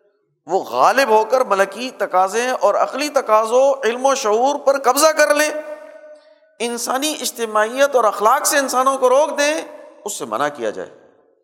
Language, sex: Urdu, male